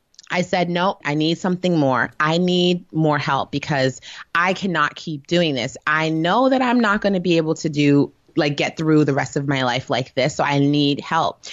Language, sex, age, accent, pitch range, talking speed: English, female, 20-39, American, 140-165 Hz, 220 wpm